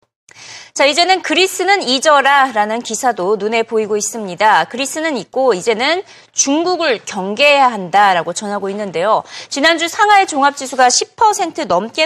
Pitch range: 220-325 Hz